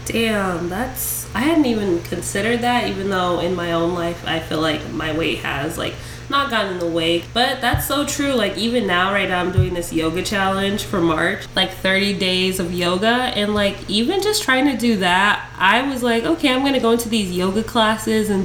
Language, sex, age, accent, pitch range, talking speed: English, female, 20-39, American, 175-230 Hz, 215 wpm